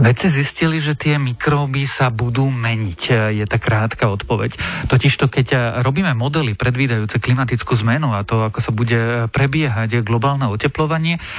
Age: 40-59